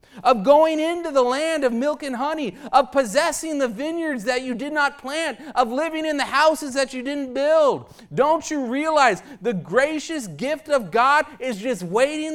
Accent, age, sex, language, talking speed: American, 30-49, male, English, 185 wpm